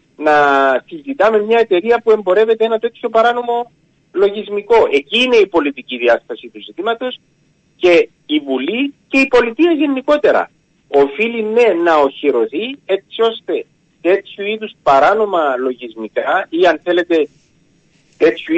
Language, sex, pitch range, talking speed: Greek, male, 145-230 Hz, 125 wpm